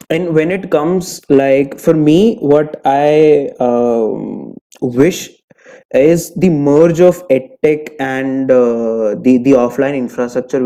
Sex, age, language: male, 20-39, English